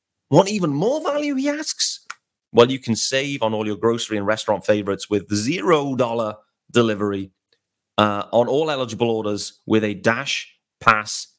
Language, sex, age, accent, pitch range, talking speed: English, male, 30-49, British, 105-150 Hz, 155 wpm